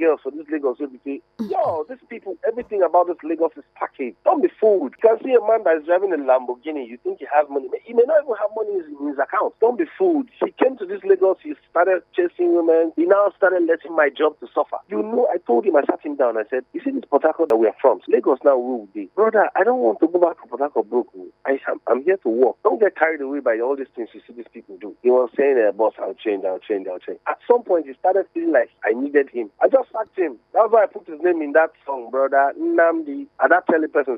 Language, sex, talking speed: English, male, 260 wpm